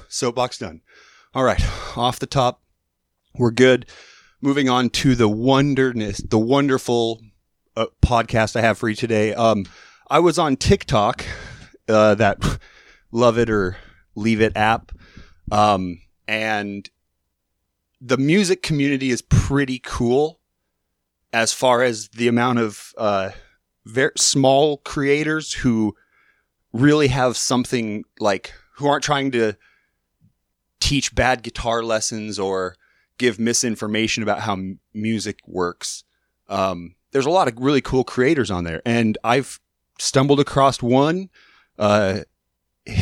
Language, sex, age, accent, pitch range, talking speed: English, male, 30-49, American, 105-135 Hz, 125 wpm